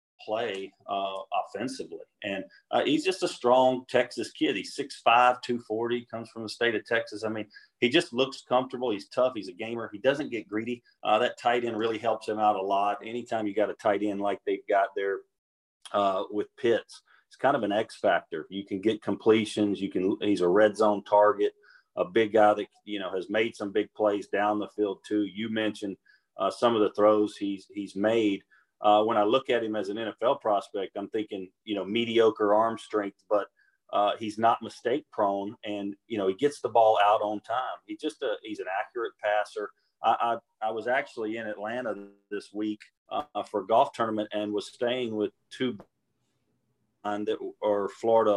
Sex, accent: male, American